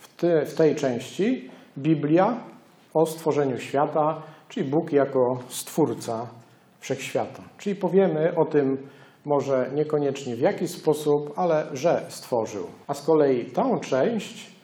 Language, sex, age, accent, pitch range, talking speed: Polish, male, 40-59, native, 135-165 Hz, 120 wpm